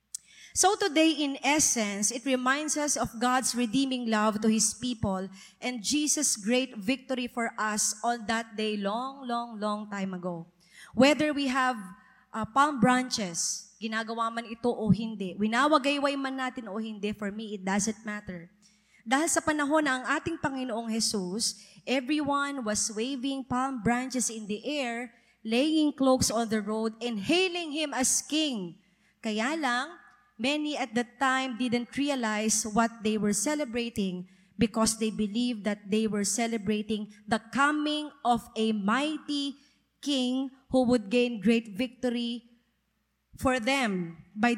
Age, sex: 20-39, female